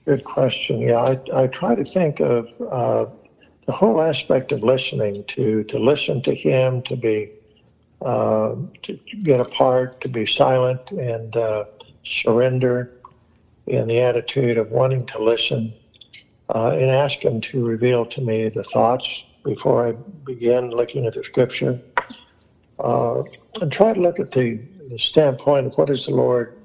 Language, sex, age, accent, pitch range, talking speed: English, male, 60-79, American, 120-140 Hz, 160 wpm